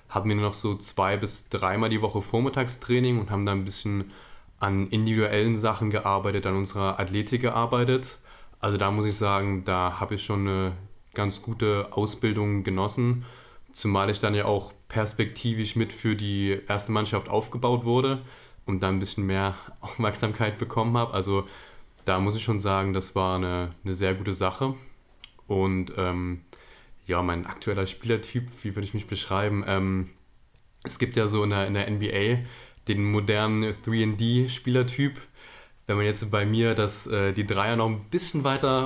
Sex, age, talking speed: male, 20-39, 165 wpm